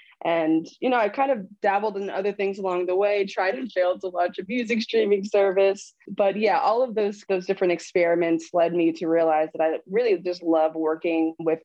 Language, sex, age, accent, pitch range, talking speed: English, female, 20-39, American, 165-205 Hz, 210 wpm